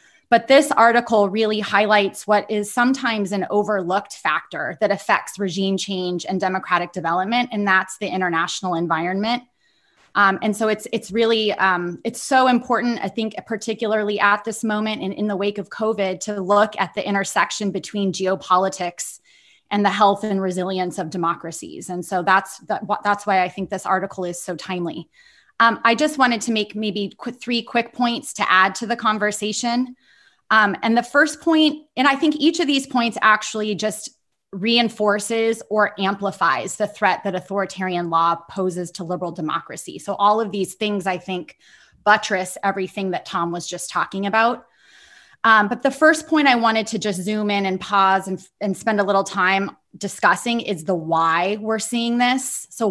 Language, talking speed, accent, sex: English, 175 wpm, American, female